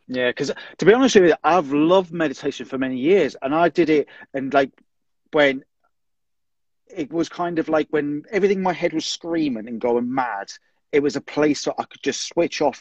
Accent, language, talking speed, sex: British, English, 205 wpm, male